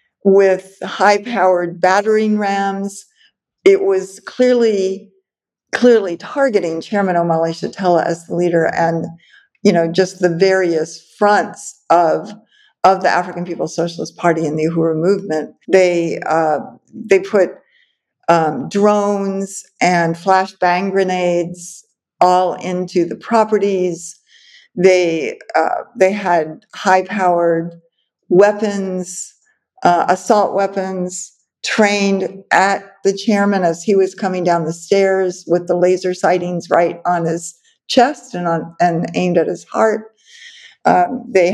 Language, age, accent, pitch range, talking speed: English, 50-69, American, 175-205 Hz, 120 wpm